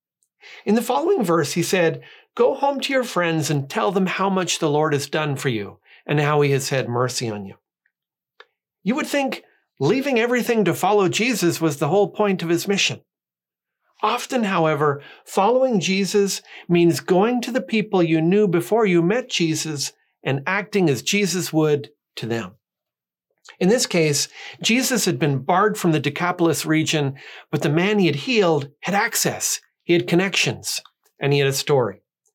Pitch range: 145-205 Hz